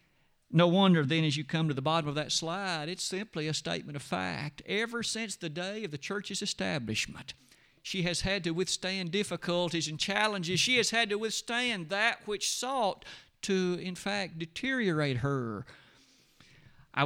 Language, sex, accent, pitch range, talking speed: English, male, American, 150-205 Hz, 170 wpm